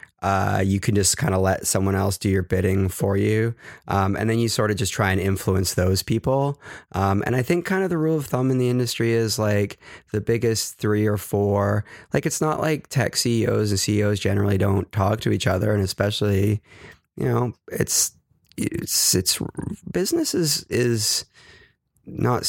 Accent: American